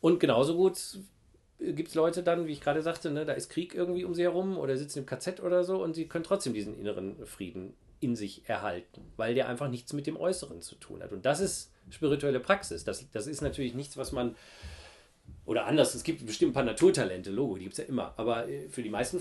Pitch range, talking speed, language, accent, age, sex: 120-160 Hz, 235 wpm, German, German, 40-59, male